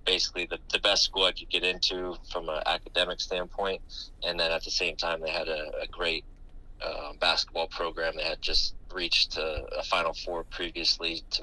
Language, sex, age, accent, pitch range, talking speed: English, male, 20-39, American, 80-90 Hz, 195 wpm